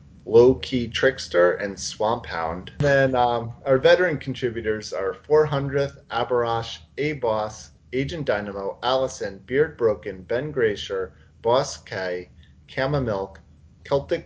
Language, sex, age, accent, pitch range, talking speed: English, male, 30-49, American, 105-145 Hz, 120 wpm